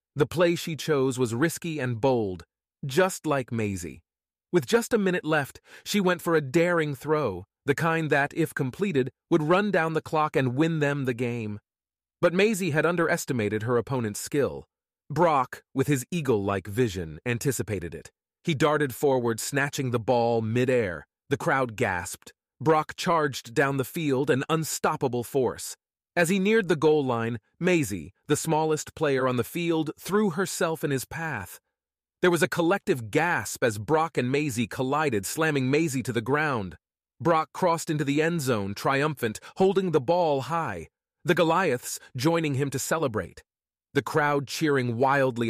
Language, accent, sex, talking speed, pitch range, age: English, American, male, 160 wpm, 125-160 Hz, 30-49